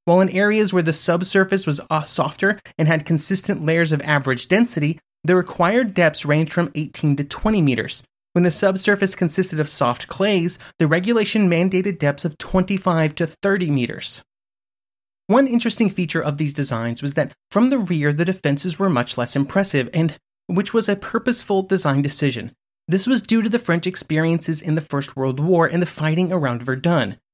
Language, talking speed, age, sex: English, 180 wpm, 30-49, male